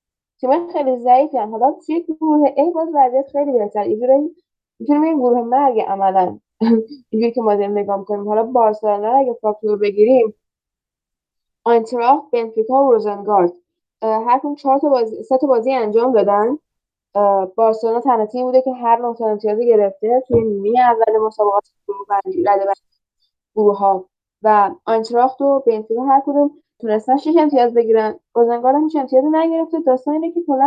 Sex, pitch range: female, 215-275 Hz